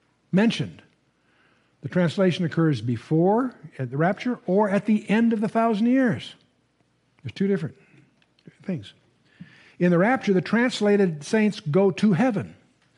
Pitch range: 165-225 Hz